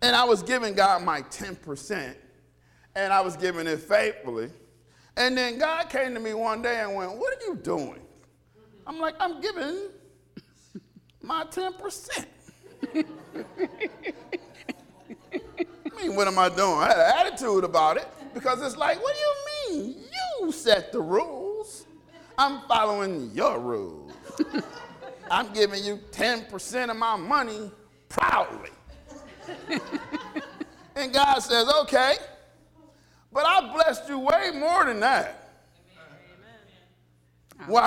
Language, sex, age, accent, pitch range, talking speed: English, male, 40-59, American, 215-330 Hz, 130 wpm